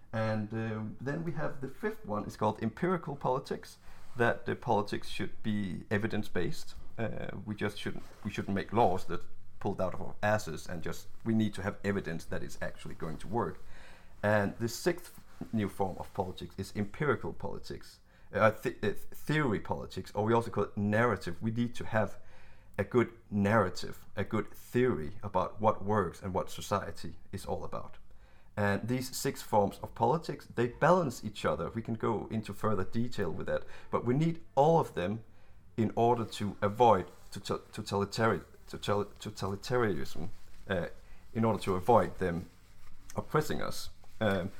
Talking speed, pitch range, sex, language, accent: 165 wpm, 95-115 Hz, male, English, Danish